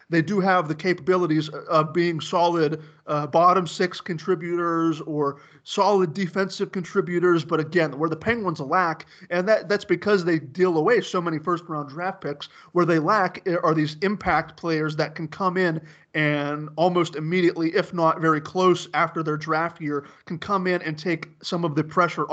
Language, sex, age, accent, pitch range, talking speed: English, male, 30-49, American, 155-185 Hz, 175 wpm